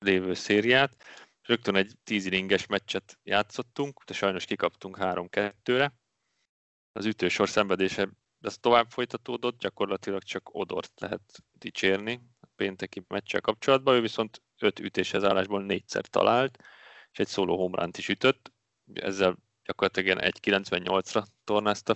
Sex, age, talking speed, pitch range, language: male, 30-49, 125 wpm, 95-115 Hz, Hungarian